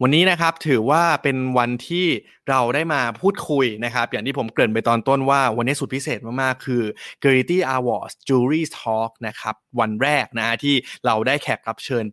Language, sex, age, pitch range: Thai, male, 20-39, 115-140 Hz